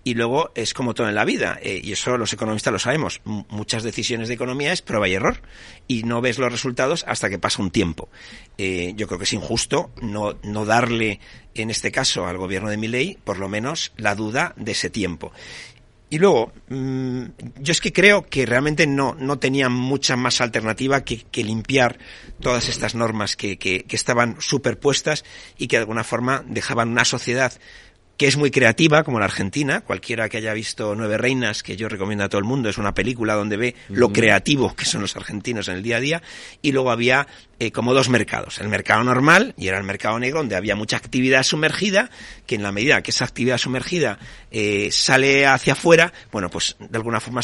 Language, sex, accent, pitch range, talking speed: Spanish, male, Spanish, 110-130 Hz, 210 wpm